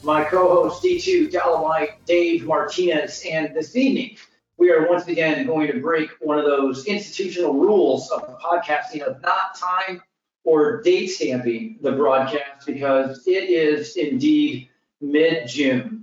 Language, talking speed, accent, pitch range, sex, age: English, 140 wpm, American, 140-175 Hz, male, 40-59